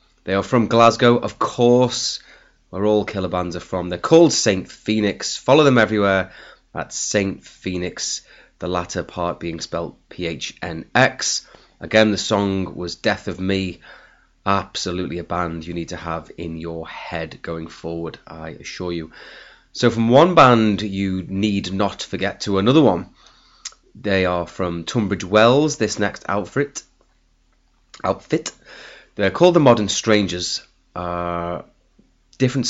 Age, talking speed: 30-49, 140 wpm